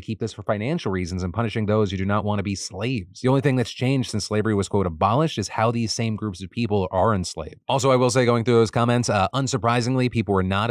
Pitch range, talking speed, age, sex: 100-125 Hz, 265 wpm, 30-49, male